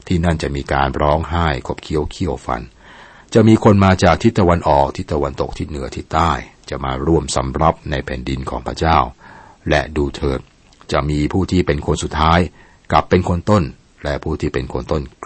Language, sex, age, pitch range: Thai, male, 60-79, 70-85 Hz